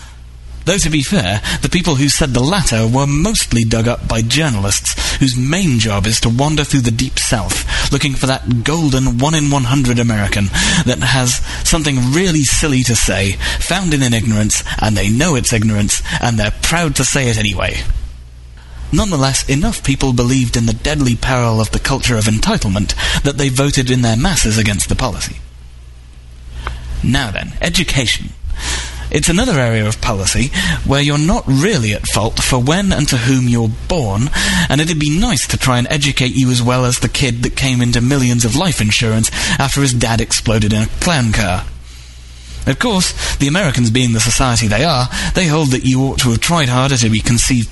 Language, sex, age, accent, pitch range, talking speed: English, male, 30-49, British, 105-140 Hz, 185 wpm